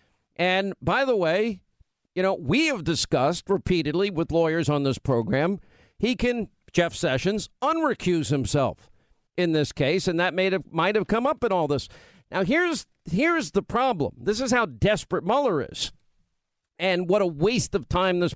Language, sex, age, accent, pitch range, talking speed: English, male, 50-69, American, 165-225 Hz, 165 wpm